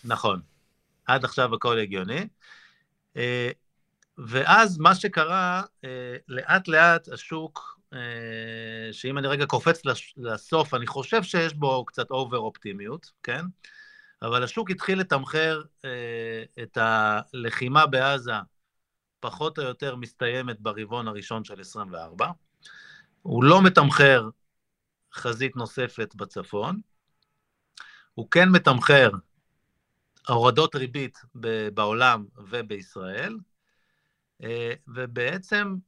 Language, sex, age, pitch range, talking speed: Hebrew, male, 50-69, 120-170 Hz, 85 wpm